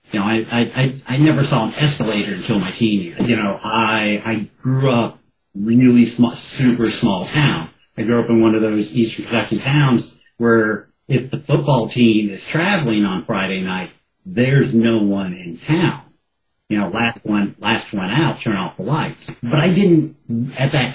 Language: English